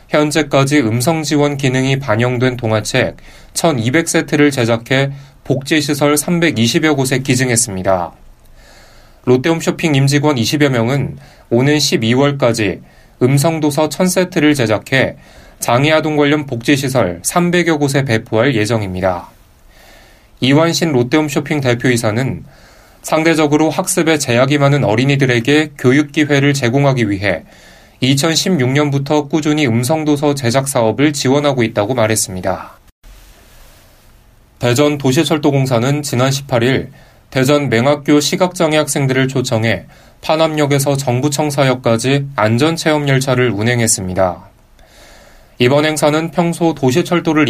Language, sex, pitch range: Korean, male, 120-155 Hz